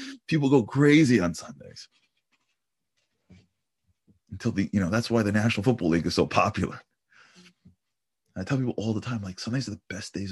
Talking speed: 175 wpm